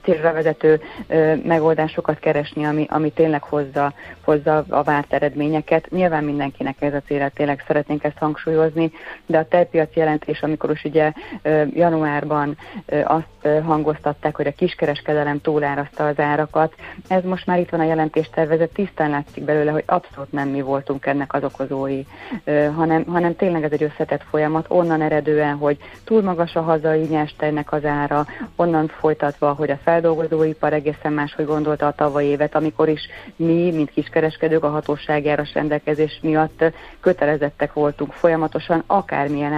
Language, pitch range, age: Hungarian, 145-160 Hz, 30-49